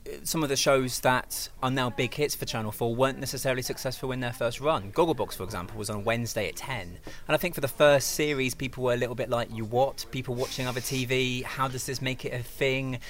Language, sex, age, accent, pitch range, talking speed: English, male, 20-39, British, 110-135 Hz, 245 wpm